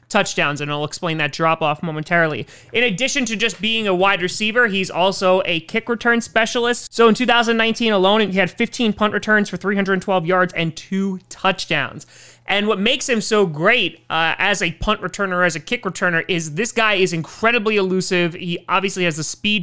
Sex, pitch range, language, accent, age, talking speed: male, 170-220 Hz, English, American, 30-49, 195 wpm